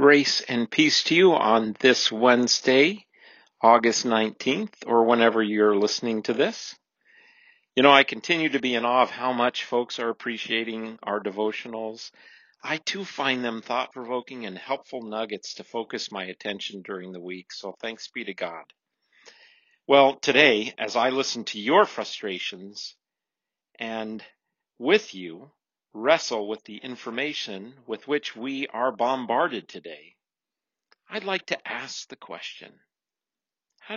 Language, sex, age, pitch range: English, male, 50-69, 110-140 Hz